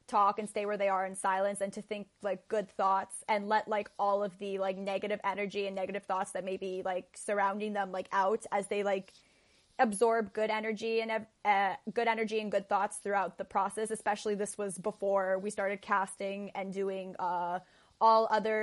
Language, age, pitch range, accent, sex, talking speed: English, 20-39, 200-235 Hz, American, female, 200 wpm